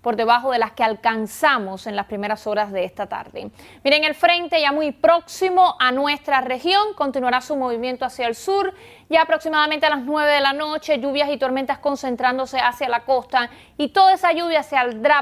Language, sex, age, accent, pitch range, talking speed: Spanish, female, 30-49, American, 240-295 Hz, 195 wpm